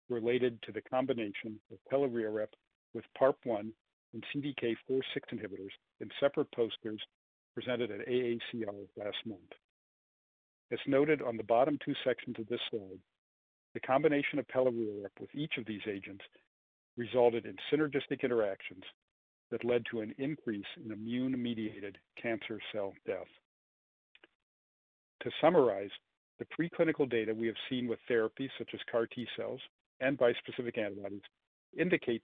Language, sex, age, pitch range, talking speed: English, male, 50-69, 110-130 Hz, 135 wpm